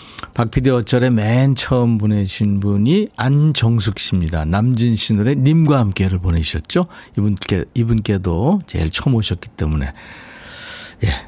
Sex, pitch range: male, 105-155 Hz